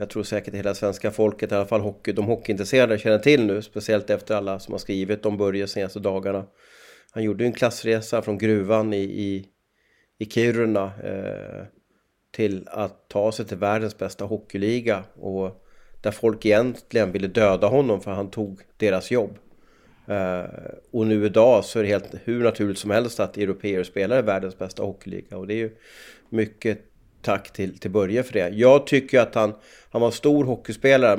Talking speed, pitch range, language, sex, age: 185 wpm, 100-115 Hz, English, male, 30-49